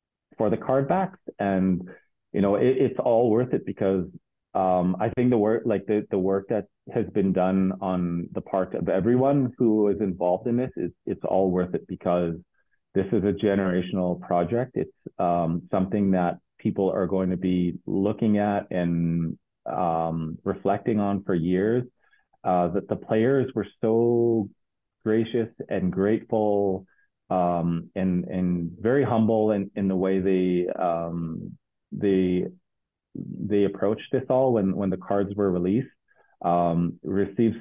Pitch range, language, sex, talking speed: 90-105 Hz, English, male, 155 wpm